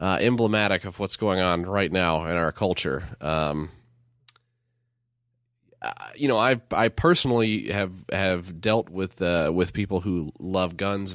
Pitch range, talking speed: 85-120 Hz, 150 wpm